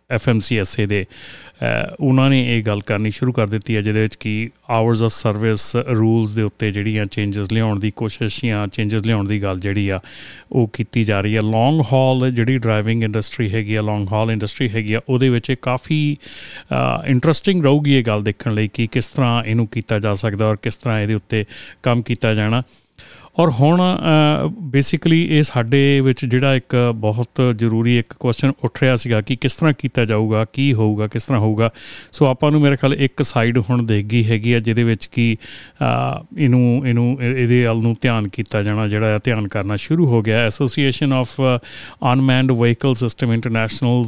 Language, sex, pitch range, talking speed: Punjabi, male, 110-135 Hz, 170 wpm